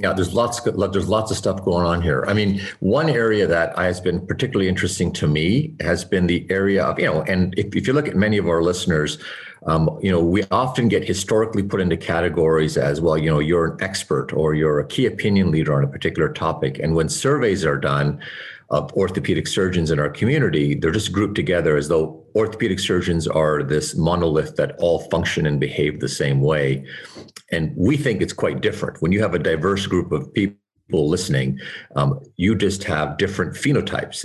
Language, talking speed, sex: English, 205 wpm, male